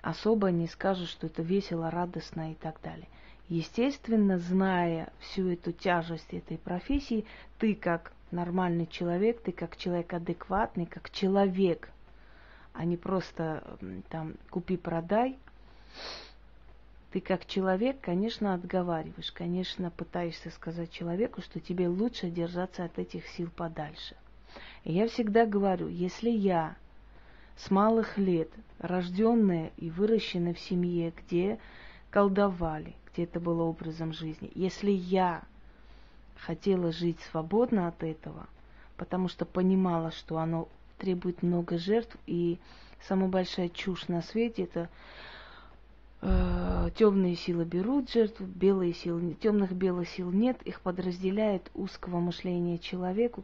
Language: Russian